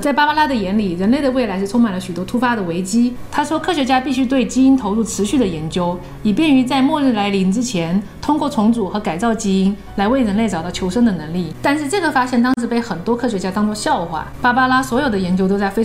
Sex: female